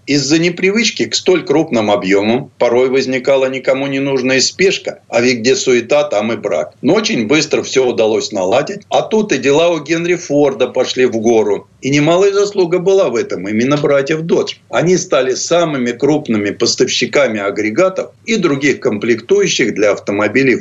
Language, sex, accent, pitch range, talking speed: Russian, male, native, 120-170 Hz, 160 wpm